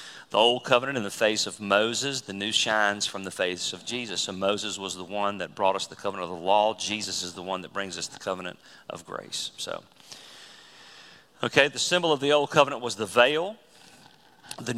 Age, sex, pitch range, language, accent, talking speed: 40-59, male, 100-120 Hz, English, American, 205 wpm